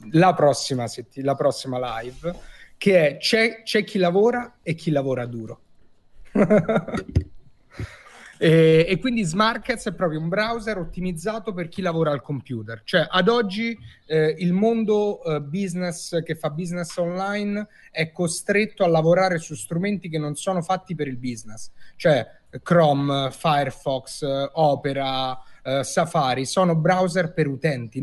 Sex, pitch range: male, 145-180 Hz